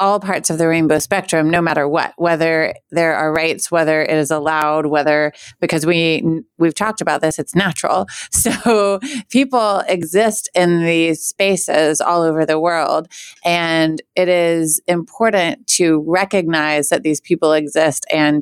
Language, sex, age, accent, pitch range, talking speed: English, female, 30-49, American, 155-175 Hz, 155 wpm